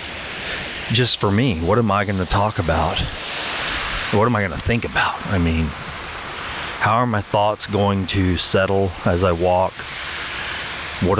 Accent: American